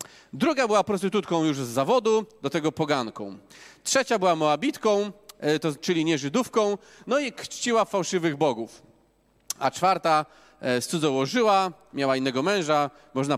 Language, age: Polish, 30-49